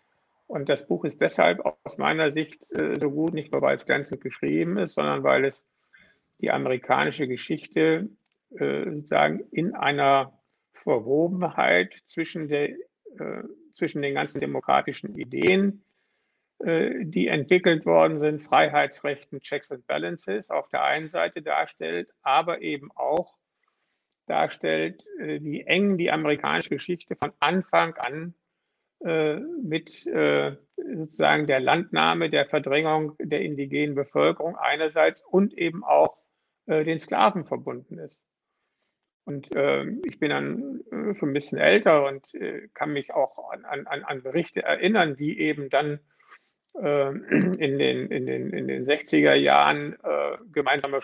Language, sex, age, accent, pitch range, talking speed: German, male, 50-69, German, 140-175 Hz, 120 wpm